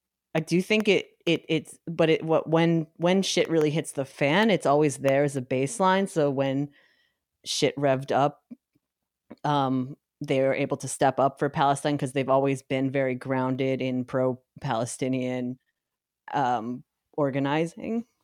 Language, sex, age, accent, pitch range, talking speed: English, female, 30-49, American, 135-165 Hz, 150 wpm